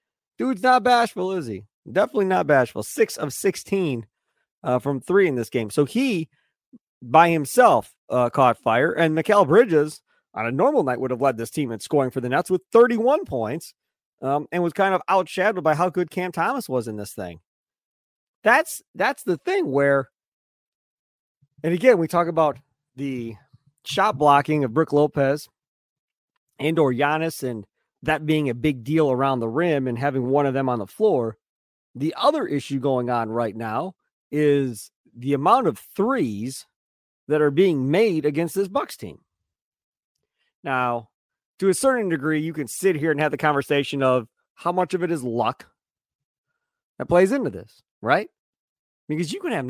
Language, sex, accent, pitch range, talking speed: English, male, American, 130-185 Hz, 175 wpm